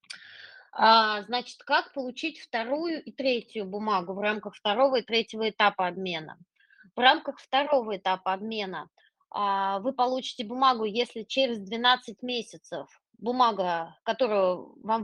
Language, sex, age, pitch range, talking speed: Russian, female, 20-39, 205-250 Hz, 115 wpm